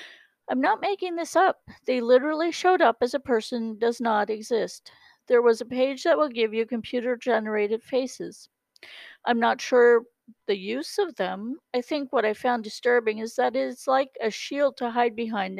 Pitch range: 220-260 Hz